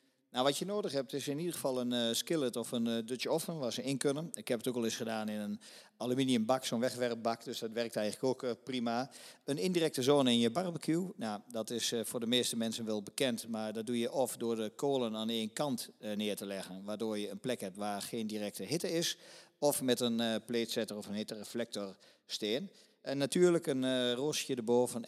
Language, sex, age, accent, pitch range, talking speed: Dutch, male, 50-69, Dutch, 105-130 Hz, 230 wpm